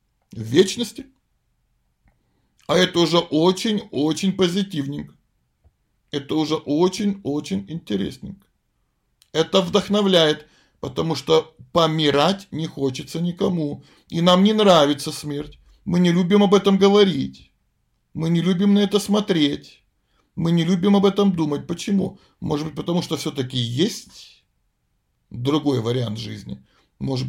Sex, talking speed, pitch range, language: male, 115 wpm, 140-185 Hz, Russian